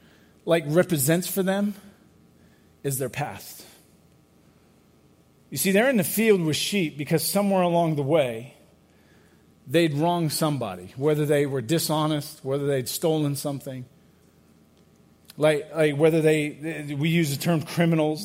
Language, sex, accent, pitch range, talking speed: English, male, American, 135-170 Hz, 135 wpm